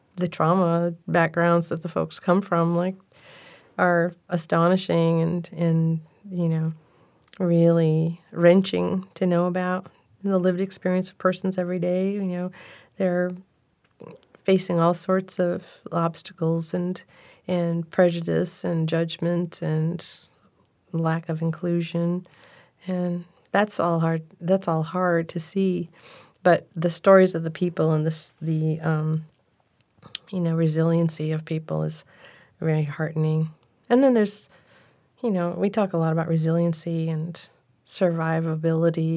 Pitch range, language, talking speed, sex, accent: 160-180 Hz, English, 130 wpm, female, American